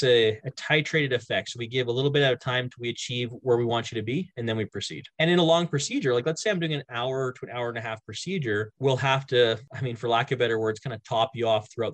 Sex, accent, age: male, American, 20-39